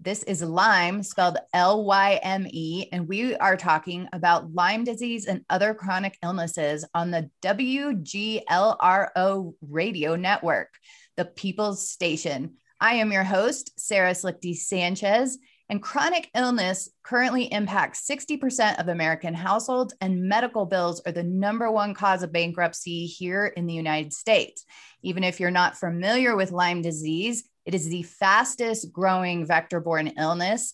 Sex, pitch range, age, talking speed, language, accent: female, 170-205 Hz, 30-49, 135 wpm, English, American